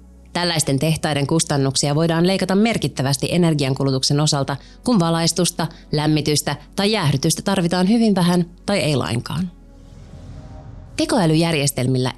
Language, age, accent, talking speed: Finnish, 30-49, native, 100 wpm